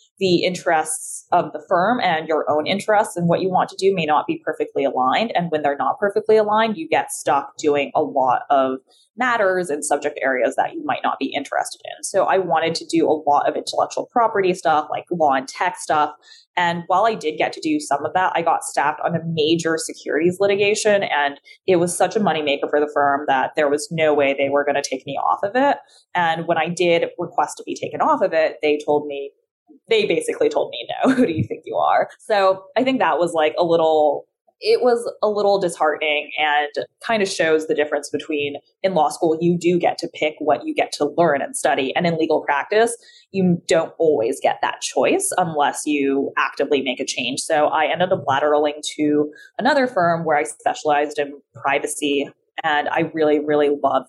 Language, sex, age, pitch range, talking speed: English, female, 20-39, 150-225 Hz, 215 wpm